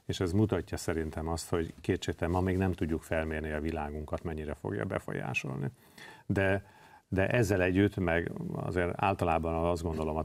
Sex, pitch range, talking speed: male, 80-95 Hz, 160 wpm